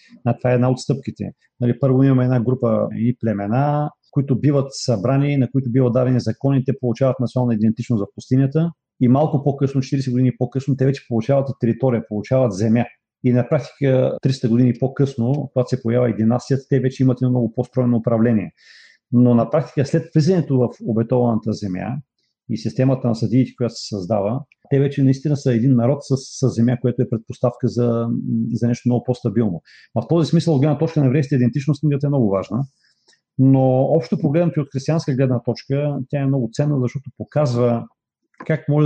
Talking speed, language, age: 180 wpm, Bulgarian, 40-59